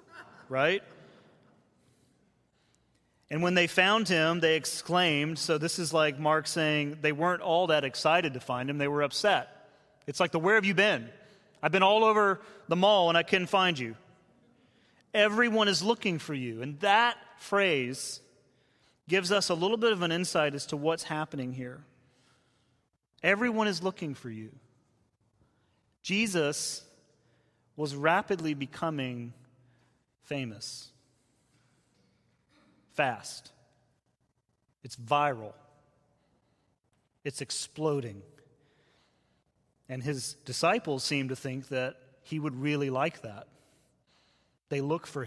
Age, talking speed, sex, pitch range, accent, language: 30-49, 125 wpm, male, 130-165 Hz, American, English